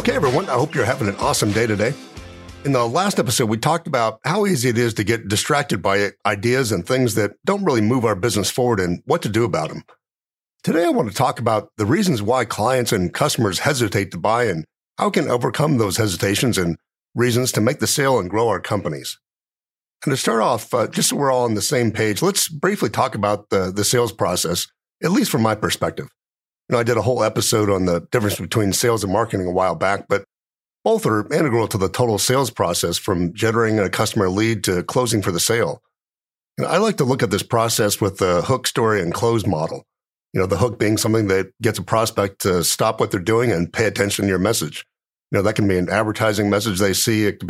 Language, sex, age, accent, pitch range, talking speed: English, male, 50-69, American, 100-120 Hz, 230 wpm